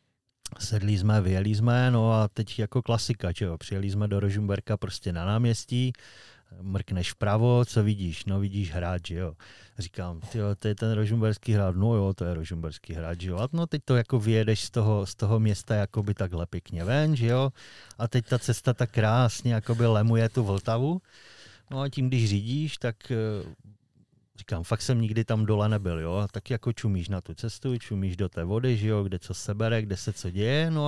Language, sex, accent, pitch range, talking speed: Czech, male, native, 100-120 Hz, 185 wpm